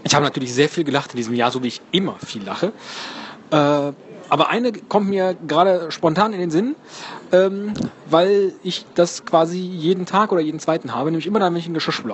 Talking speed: 215 wpm